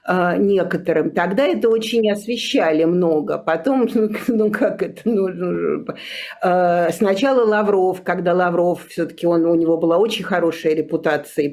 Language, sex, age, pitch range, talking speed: Russian, female, 50-69, 160-205 Hz, 120 wpm